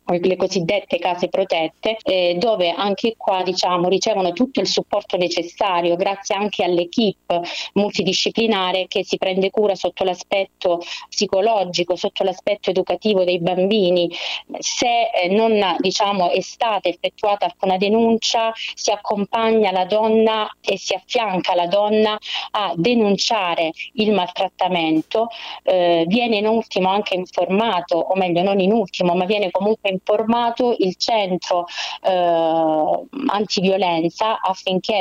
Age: 30-49